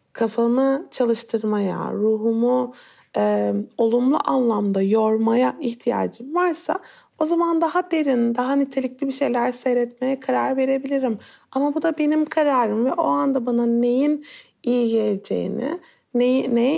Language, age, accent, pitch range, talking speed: Turkish, 30-49, native, 230-275 Hz, 120 wpm